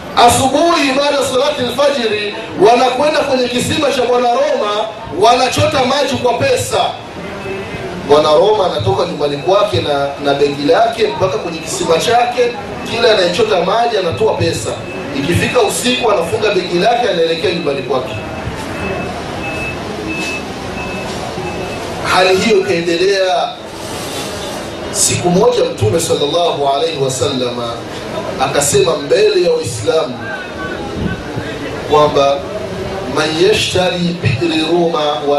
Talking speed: 95 wpm